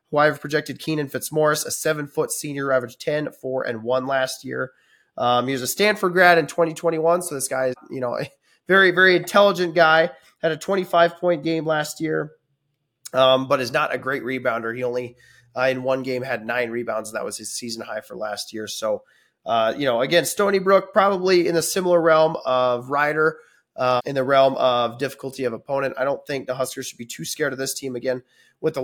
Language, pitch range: English, 125-165 Hz